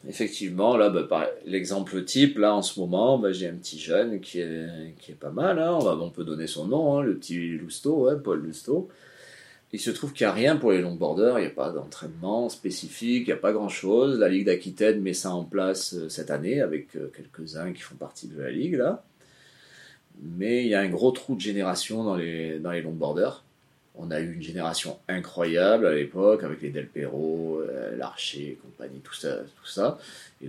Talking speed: 220 wpm